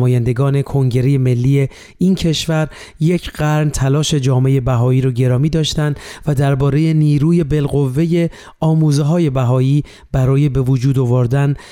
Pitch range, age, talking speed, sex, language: 130-160 Hz, 30-49, 125 wpm, male, Persian